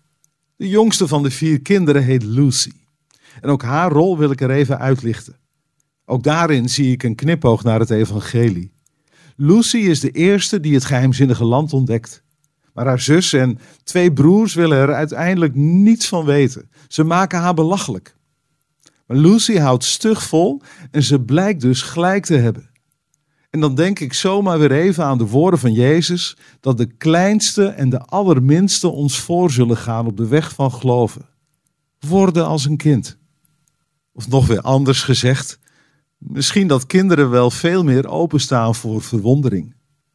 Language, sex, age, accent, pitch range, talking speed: Dutch, male, 50-69, Dutch, 130-160 Hz, 160 wpm